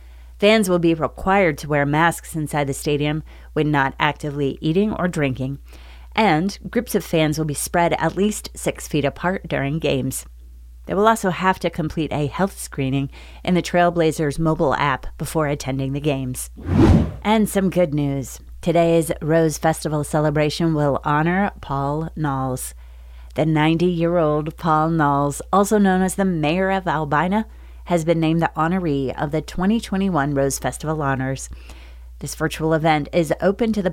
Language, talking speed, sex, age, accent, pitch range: English, 155 wpm, female, 30-49, American, 135-175 Hz